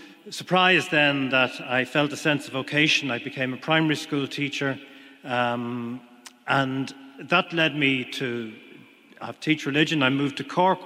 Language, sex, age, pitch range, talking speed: English, male, 40-59, 130-165 Hz, 155 wpm